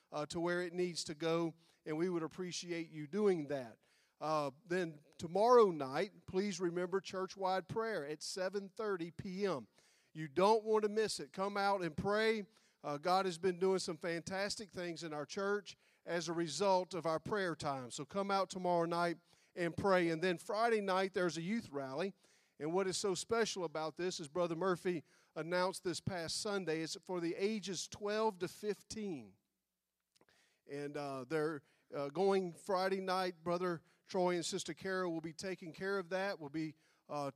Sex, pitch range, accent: male, 165-190 Hz, American